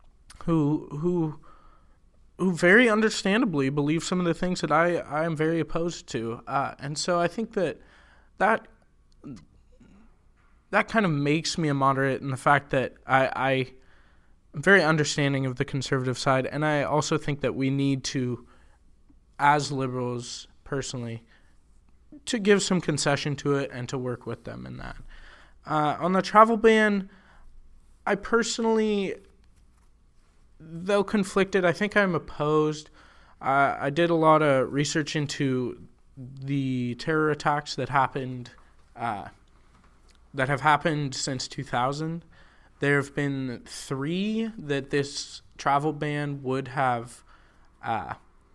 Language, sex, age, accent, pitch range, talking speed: English, male, 20-39, American, 125-160 Hz, 135 wpm